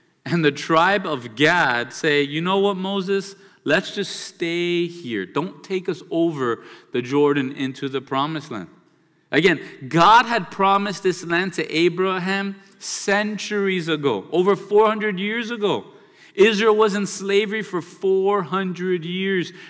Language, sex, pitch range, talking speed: English, male, 135-190 Hz, 135 wpm